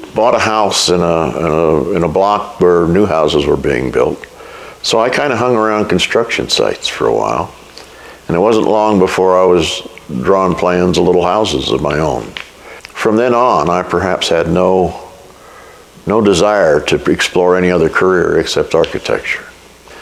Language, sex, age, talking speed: English, male, 60-79, 170 wpm